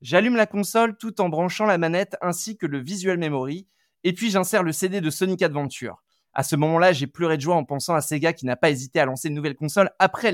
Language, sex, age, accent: French, male, 20-39, French